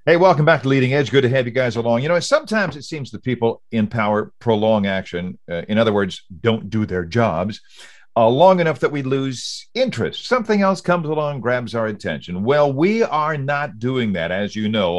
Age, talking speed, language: 50-69, 215 wpm, English